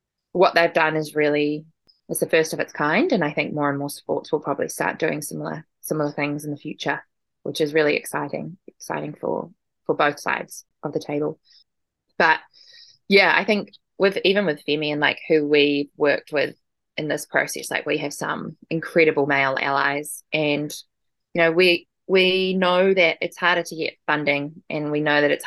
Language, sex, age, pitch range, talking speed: English, female, 20-39, 145-165 Hz, 190 wpm